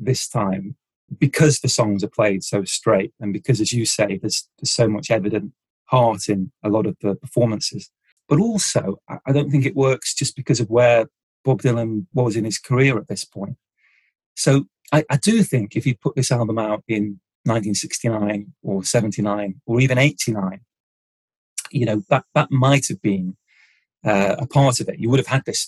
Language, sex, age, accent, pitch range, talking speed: English, male, 30-49, British, 105-145 Hz, 185 wpm